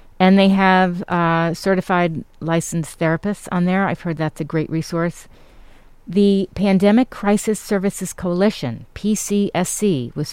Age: 40-59